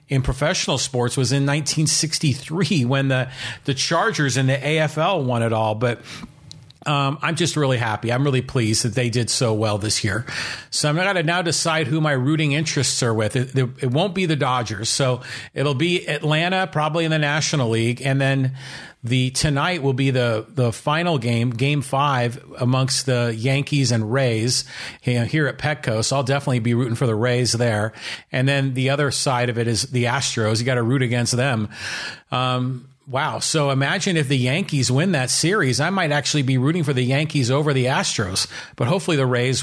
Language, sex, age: English, male, 40-59